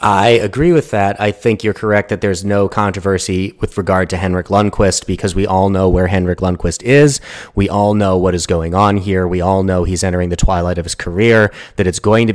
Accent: American